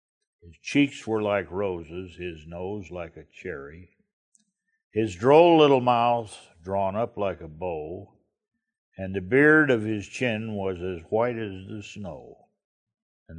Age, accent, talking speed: 60-79, American, 145 wpm